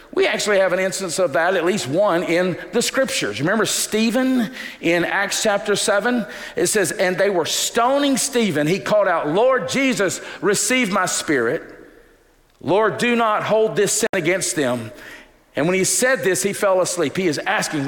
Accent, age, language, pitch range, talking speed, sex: American, 50-69, English, 155-215 Hz, 180 wpm, male